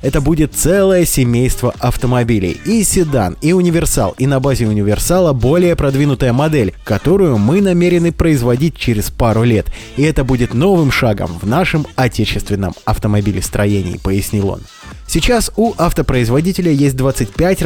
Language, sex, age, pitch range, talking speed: Russian, male, 20-39, 110-165 Hz, 135 wpm